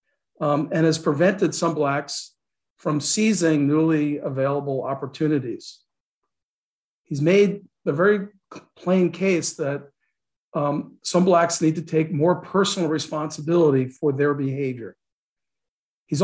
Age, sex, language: 50-69, male, English